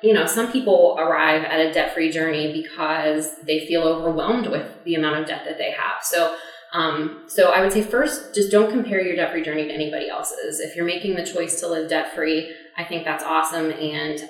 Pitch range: 160-190 Hz